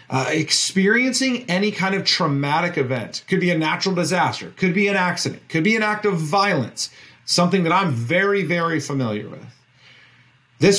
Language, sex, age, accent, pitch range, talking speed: English, male, 40-59, American, 130-185 Hz, 165 wpm